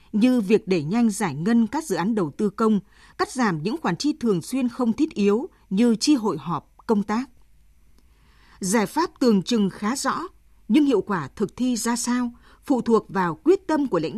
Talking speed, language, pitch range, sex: 205 wpm, Vietnamese, 190-245 Hz, female